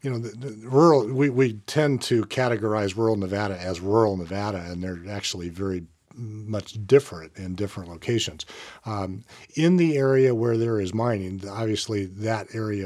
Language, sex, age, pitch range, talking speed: English, male, 50-69, 100-130 Hz, 155 wpm